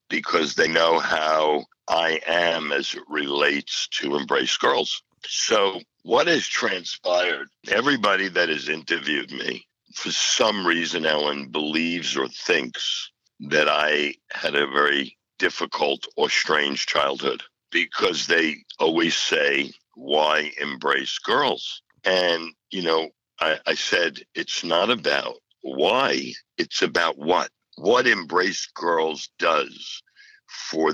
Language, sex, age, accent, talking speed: English, male, 60-79, American, 120 wpm